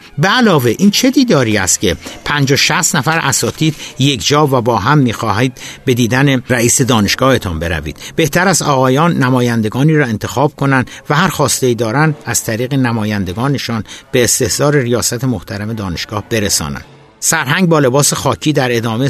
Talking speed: 155 wpm